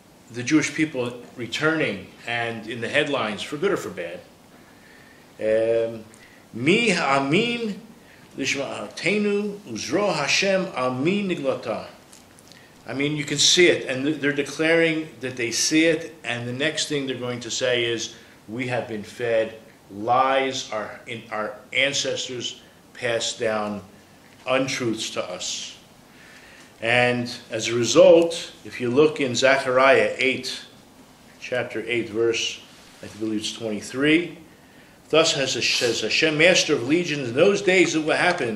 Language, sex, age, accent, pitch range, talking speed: English, male, 40-59, American, 115-155 Hz, 120 wpm